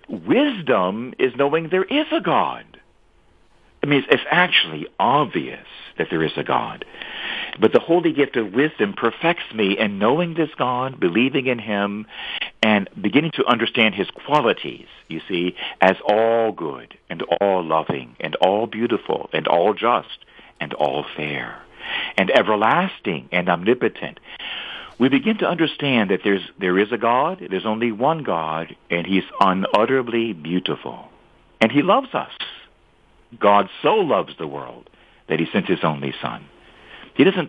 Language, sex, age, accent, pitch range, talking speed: English, male, 50-69, American, 100-160 Hz, 150 wpm